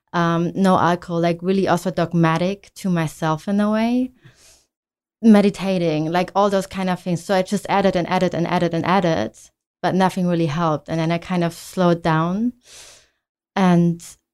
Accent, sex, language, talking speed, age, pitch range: German, female, English, 170 wpm, 20-39, 165-190 Hz